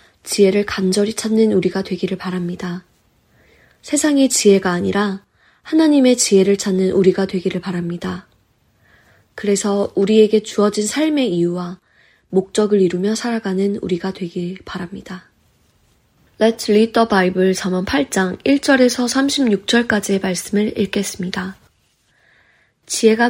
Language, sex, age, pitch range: Korean, female, 20-39, 185-220 Hz